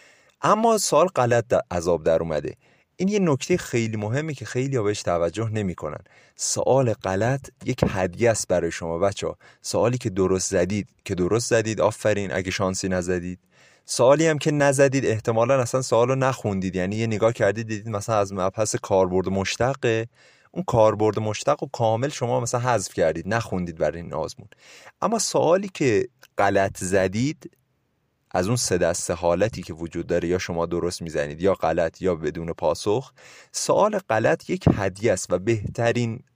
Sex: male